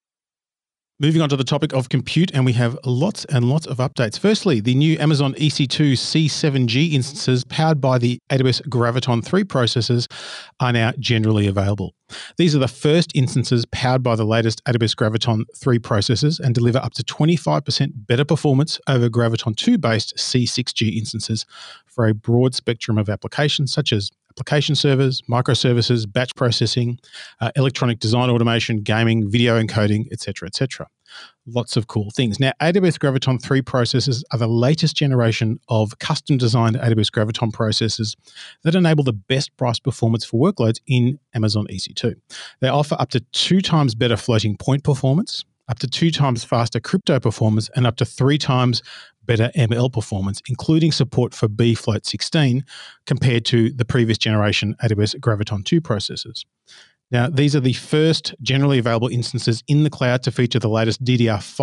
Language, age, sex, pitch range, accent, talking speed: English, 40-59, male, 115-140 Hz, Australian, 160 wpm